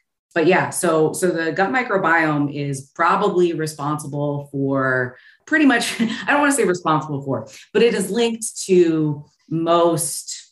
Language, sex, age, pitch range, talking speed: English, female, 30-49, 130-155 Hz, 150 wpm